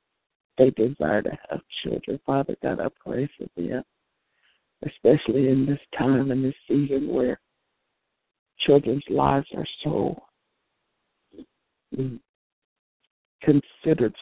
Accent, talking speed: American, 100 wpm